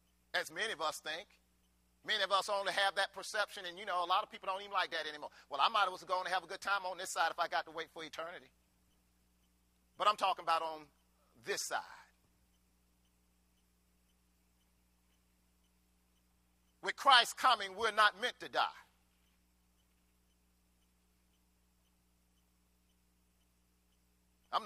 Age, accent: 40-59, American